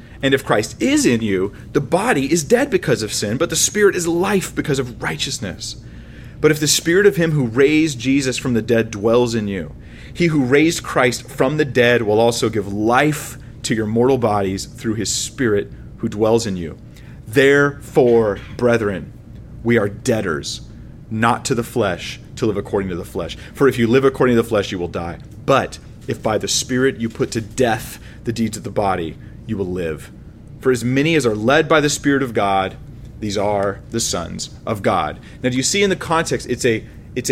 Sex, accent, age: male, American, 30-49